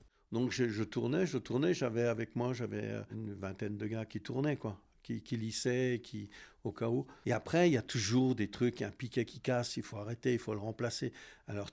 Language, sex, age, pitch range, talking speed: French, male, 60-79, 110-145 Hz, 225 wpm